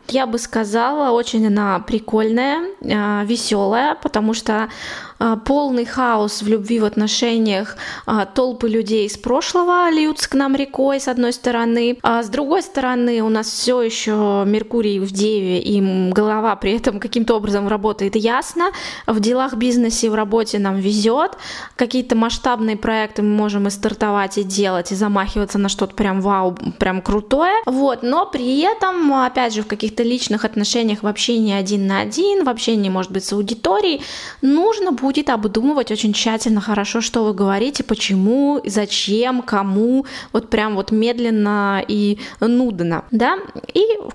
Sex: female